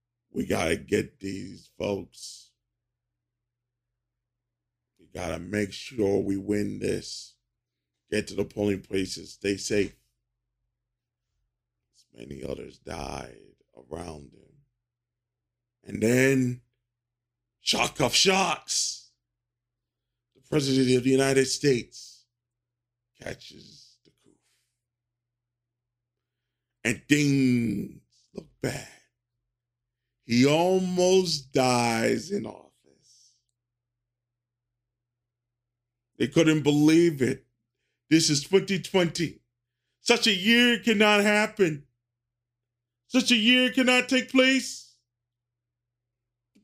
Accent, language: American, English